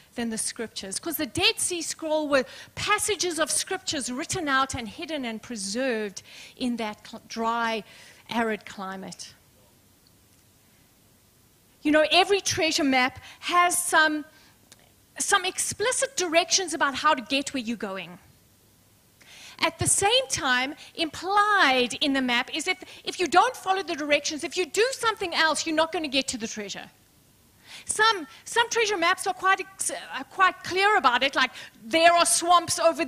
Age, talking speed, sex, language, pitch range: 40-59, 150 wpm, female, English, 240-350 Hz